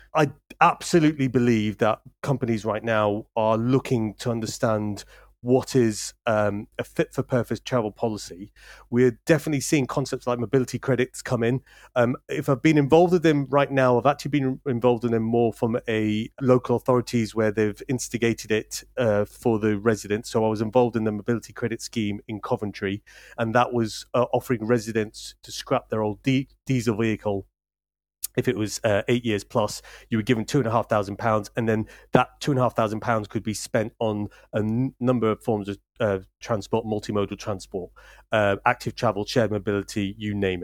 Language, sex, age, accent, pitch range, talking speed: English, male, 30-49, British, 105-125 Hz, 185 wpm